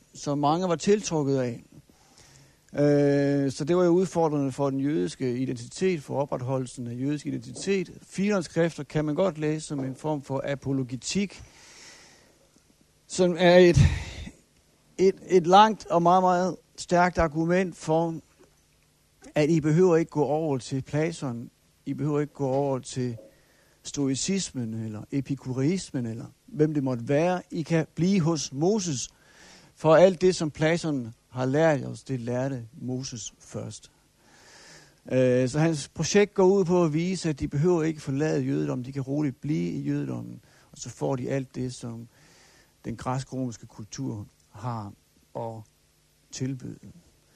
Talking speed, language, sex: 145 wpm, Danish, male